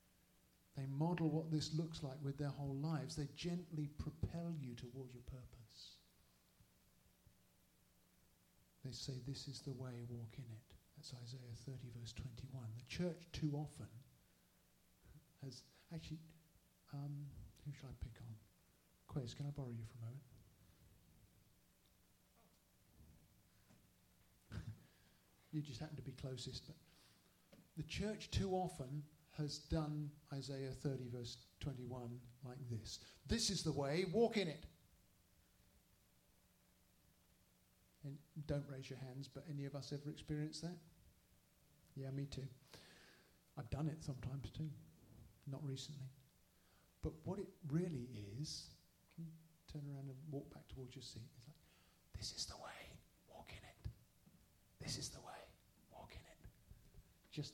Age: 50-69